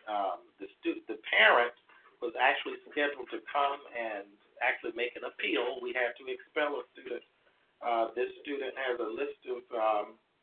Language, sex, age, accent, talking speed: English, male, 50-69, American, 165 wpm